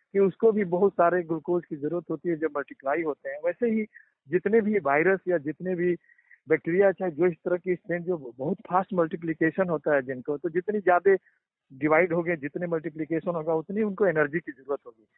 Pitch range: 165-200 Hz